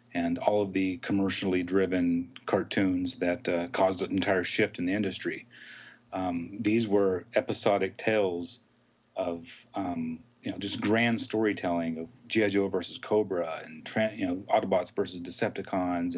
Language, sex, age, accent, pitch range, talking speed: English, male, 40-59, American, 90-105 Hz, 145 wpm